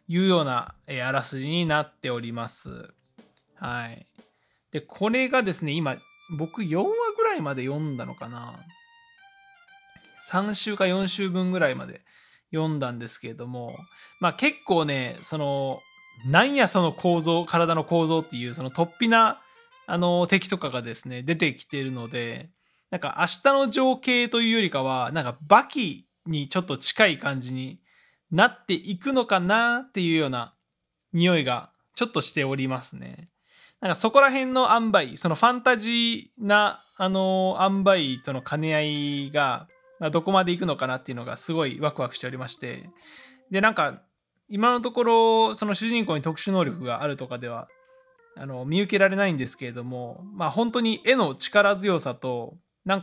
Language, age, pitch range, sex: Japanese, 20-39, 140-220 Hz, male